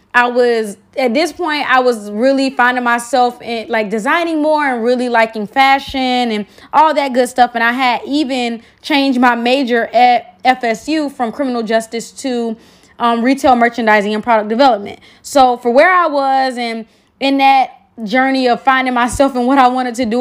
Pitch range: 230-275 Hz